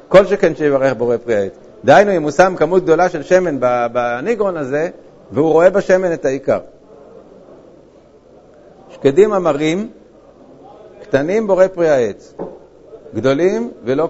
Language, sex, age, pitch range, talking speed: Hebrew, male, 50-69, 140-190 Hz, 125 wpm